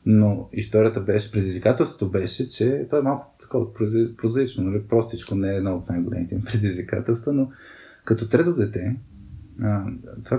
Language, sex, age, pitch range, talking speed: Bulgarian, male, 20-39, 100-125 Hz, 145 wpm